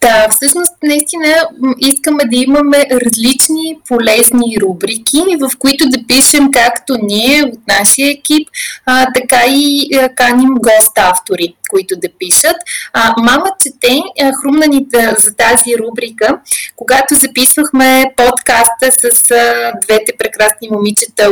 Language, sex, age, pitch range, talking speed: Bulgarian, female, 20-39, 205-270 Hz, 125 wpm